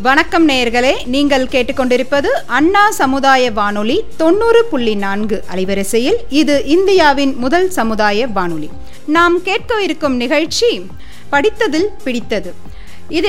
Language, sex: Tamil, female